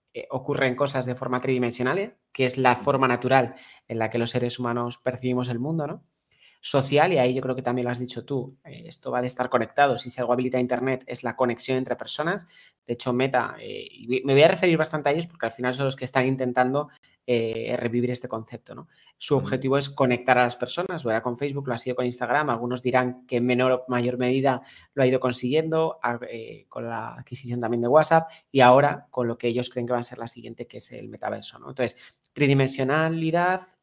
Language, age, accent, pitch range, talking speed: Spanish, 20-39, Spanish, 125-145 Hz, 225 wpm